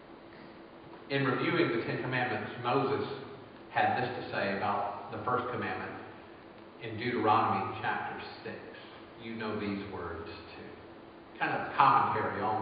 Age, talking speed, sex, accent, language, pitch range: 50-69, 130 wpm, male, American, English, 105-130 Hz